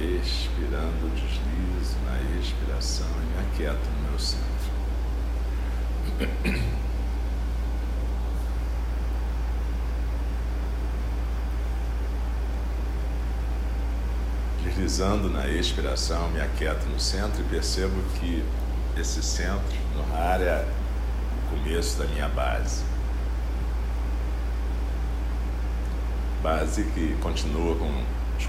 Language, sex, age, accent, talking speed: Portuguese, male, 60-79, Brazilian, 75 wpm